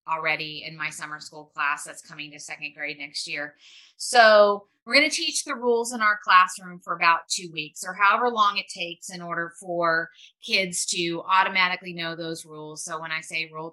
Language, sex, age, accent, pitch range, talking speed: English, female, 30-49, American, 165-200 Hz, 200 wpm